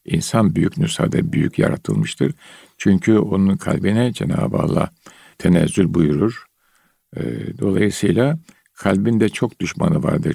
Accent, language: native, Turkish